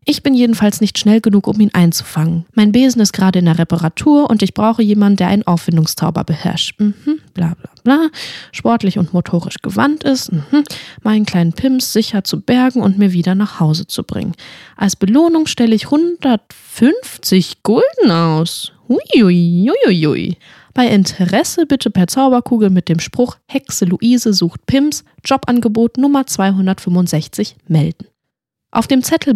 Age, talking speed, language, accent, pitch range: 10-29, 150 wpm, German, German, 175-245 Hz